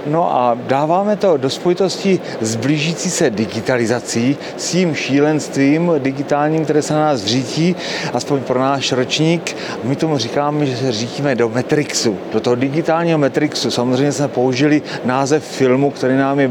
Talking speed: 155 wpm